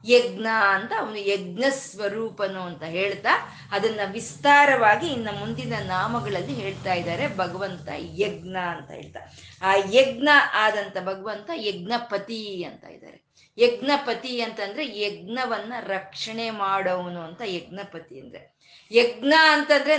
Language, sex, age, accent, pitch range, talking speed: Kannada, female, 20-39, native, 190-235 Hz, 105 wpm